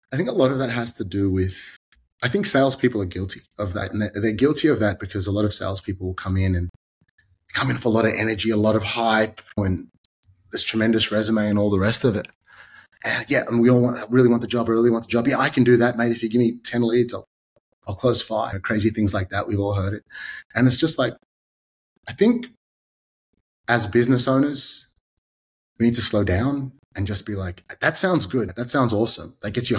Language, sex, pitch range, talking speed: English, male, 95-125 Hz, 235 wpm